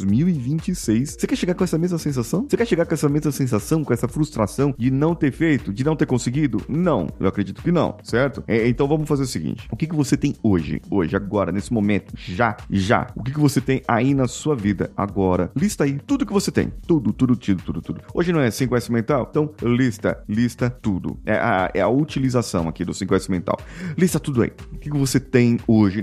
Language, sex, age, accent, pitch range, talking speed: Portuguese, male, 30-49, Brazilian, 115-150 Hz, 225 wpm